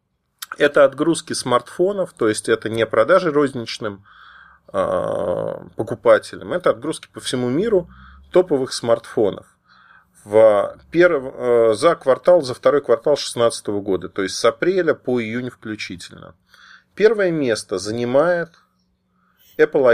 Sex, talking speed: male, 110 wpm